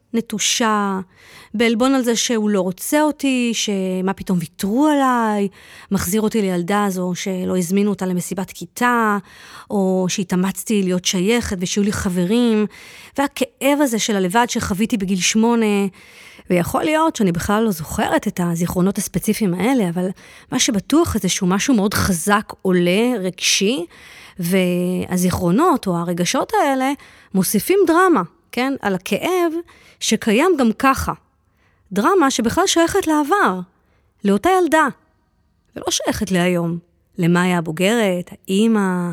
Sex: female